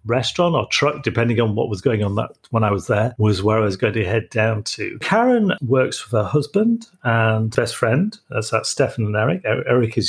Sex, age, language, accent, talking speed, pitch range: male, 40-59, English, British, 225 wpm, 110-130 Hz